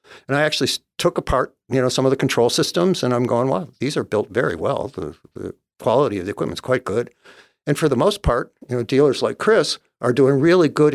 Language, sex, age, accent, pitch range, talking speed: English, male, 60-79, American, 115-135 Hz, 235 wpm